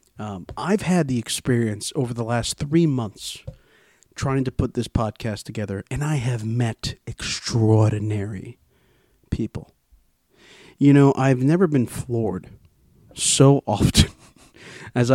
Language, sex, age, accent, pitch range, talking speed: English, male, 40-59, American, 115-140 Hz, 125 wpm